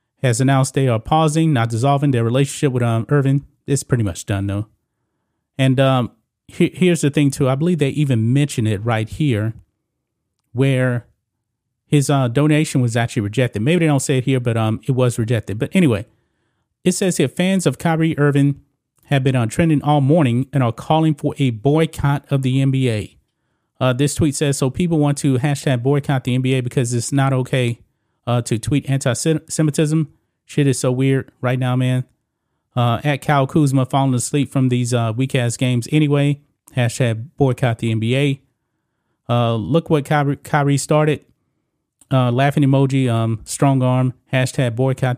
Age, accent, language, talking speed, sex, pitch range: 30-49, American, English, 175 wpm, male, 120-145 Hz